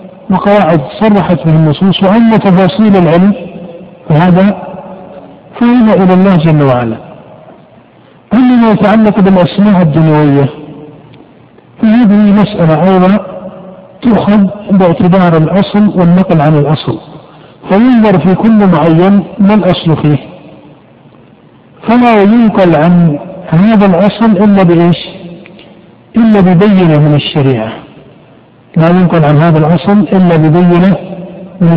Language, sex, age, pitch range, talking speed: Arabic, male, 50-69, 160-200 Hz, 100 wpm